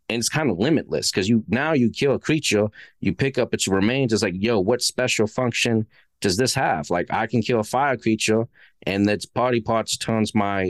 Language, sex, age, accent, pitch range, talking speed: English, male, 30-49, American, 100-140 Hz, 220 wpm